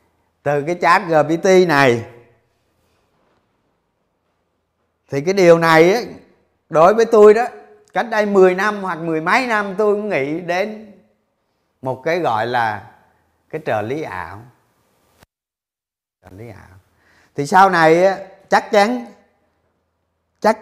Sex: male